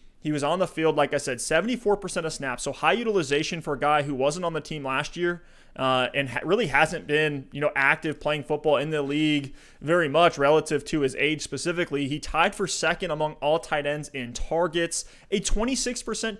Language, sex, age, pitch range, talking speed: English, male, 20-39, 145-170 Hz, 210 wpm